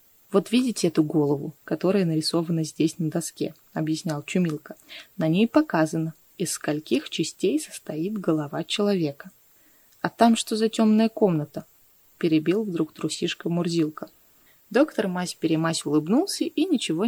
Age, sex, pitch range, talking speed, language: 20-39, female, 160-225 Hz, 125 wpm, Russian